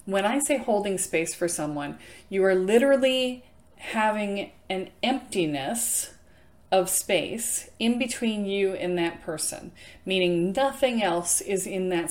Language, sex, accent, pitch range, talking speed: English, female, American, 160-205 Hz, 135 wpm